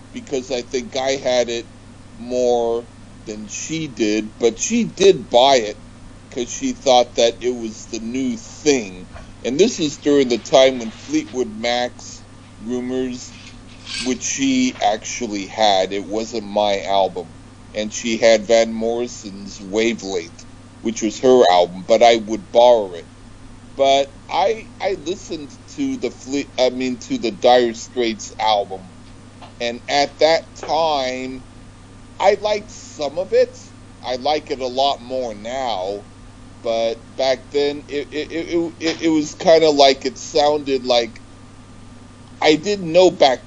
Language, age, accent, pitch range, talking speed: English, 40-59, American, 115-140 Hz, 145 wpm